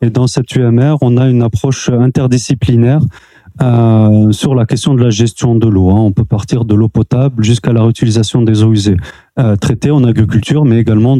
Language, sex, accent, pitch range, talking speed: French, male, French, 110-130 Hz, 195 wpm